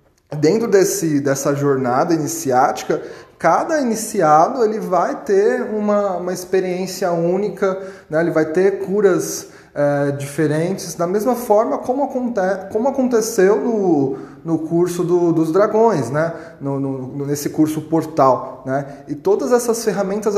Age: 20-39